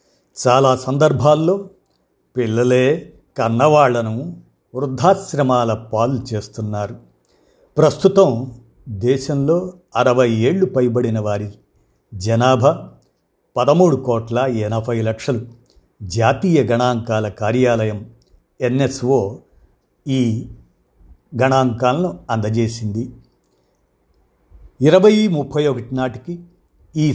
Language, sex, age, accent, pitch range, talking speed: Telugu, male, 50-69, native, 115-145 Hz, 65 wpm